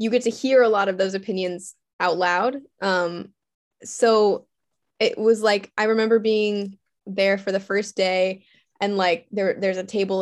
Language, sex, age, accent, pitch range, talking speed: English, female, 10-29, American, 180-220 Hz, 175 wpm